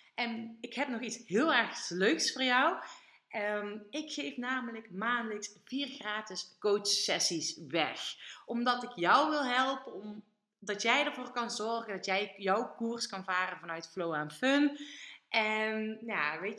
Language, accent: Dutch, Dutch